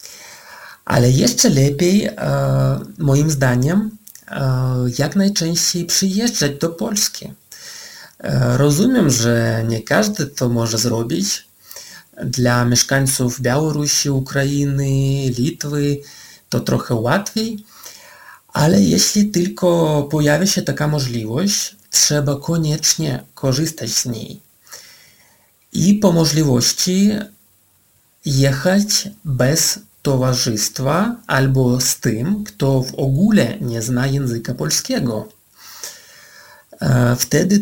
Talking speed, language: 85 wpm, Polish